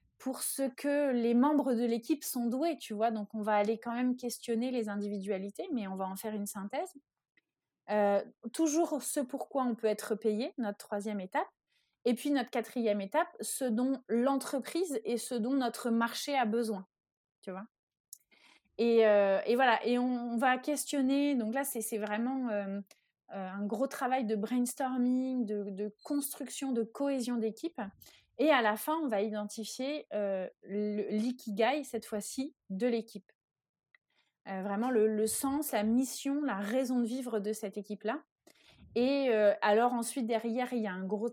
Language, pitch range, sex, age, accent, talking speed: French, 210-260 Hz, female, 30-49, French, 175 wpm